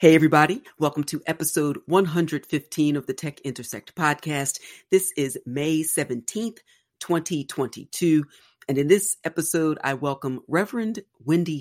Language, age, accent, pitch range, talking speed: English, 40-59, American, 135-165 Hz, 125 wpm